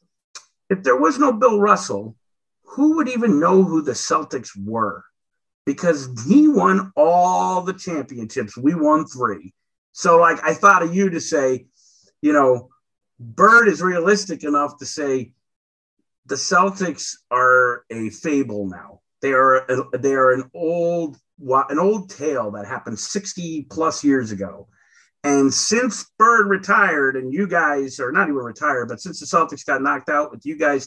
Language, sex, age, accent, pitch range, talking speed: English, male, 50-69, American, 105-160 Hz, 155 wpm